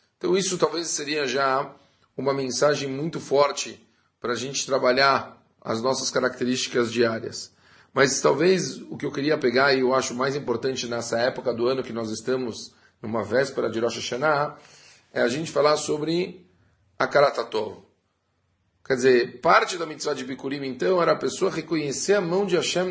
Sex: male